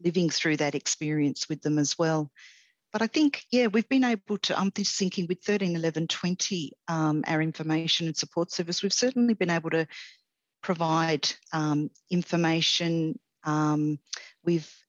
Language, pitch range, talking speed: English, 155-190 Hz, 140 wpm